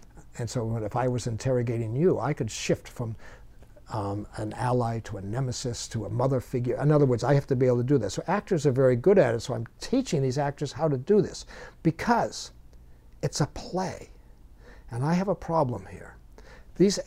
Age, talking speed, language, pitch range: 60-79, 205 wpm, English, 120-160 Hz